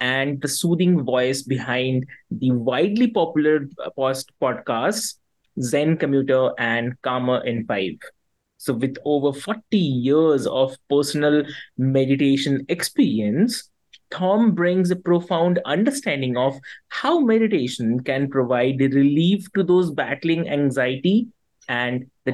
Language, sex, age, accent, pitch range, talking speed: English, male, 20-39, Indian, 130-185 Hz, 110 wpm